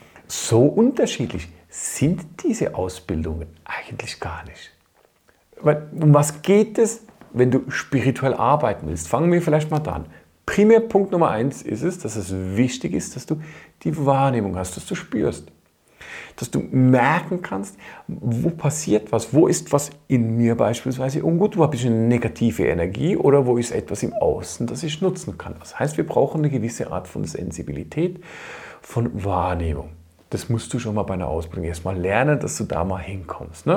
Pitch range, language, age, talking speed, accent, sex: 95-155 Hz, German, 40-59, 170 wpm, German, male